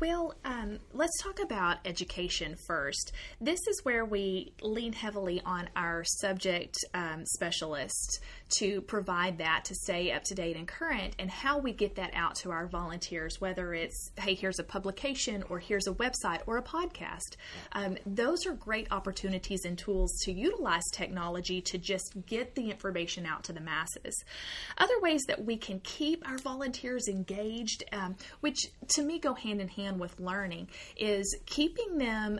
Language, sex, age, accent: English, female, 30-49, American